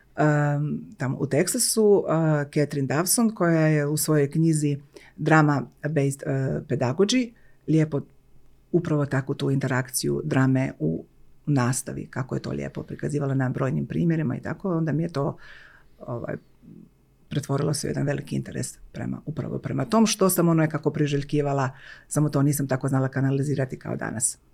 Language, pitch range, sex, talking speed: Croatian, 135-155 Hz, female, 155 wpm